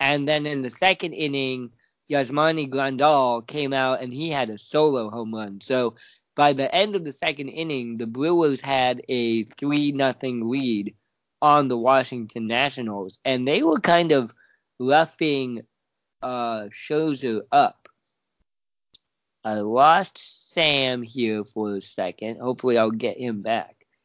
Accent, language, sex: American, English, male